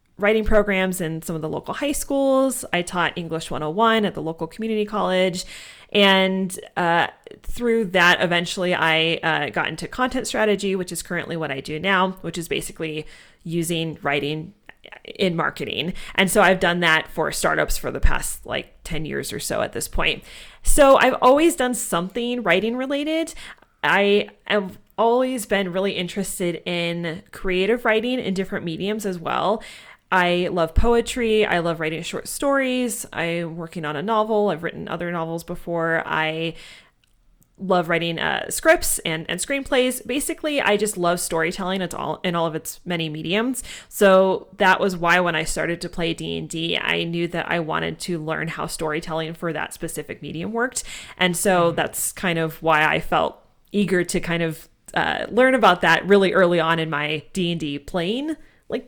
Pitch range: 165-215 Hz